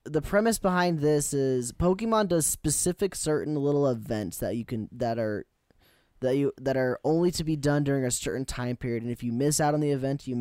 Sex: male